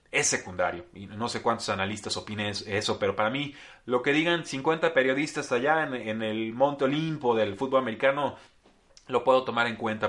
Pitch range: 100-120 Hz